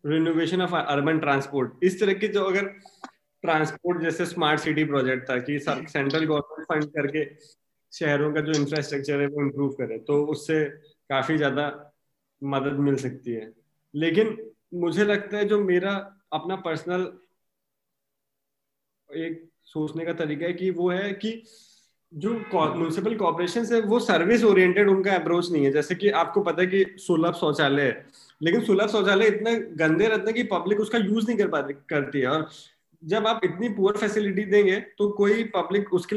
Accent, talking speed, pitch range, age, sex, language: native, 135 wpm, 150-205 Hz, 20-39, male, Hindi